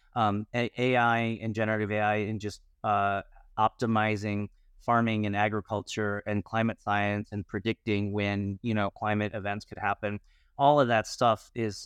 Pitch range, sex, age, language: 105-120 Hz, male, 30-49, English